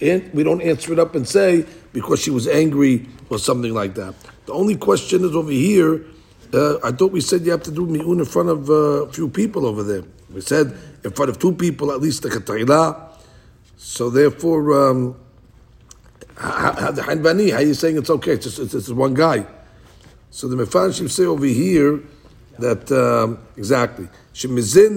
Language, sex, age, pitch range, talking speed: English, male, 60-79, 120-160 Hz, 175 wpm